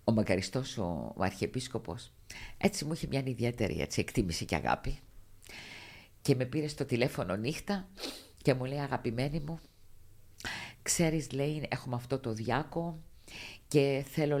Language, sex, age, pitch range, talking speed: Greek, female, 50-69, 100-140 Hz, 135 wpm